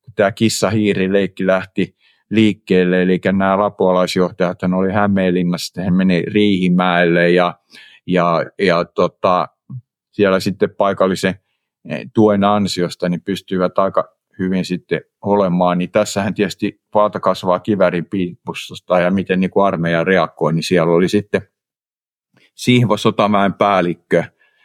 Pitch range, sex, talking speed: 90-100 Hz, male, 105 wpm